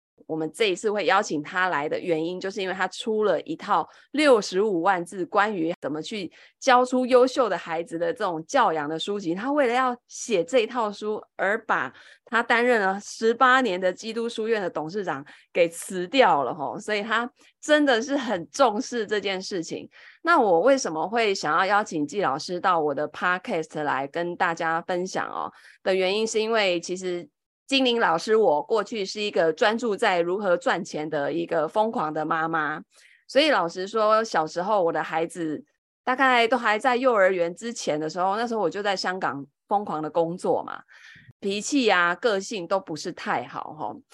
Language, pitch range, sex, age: Chinese, 170-235 Hz, female, 20-39